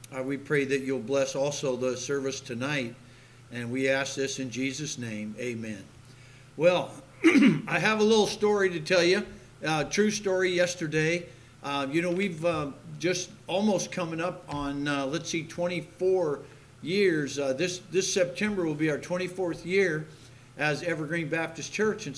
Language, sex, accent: English, male, American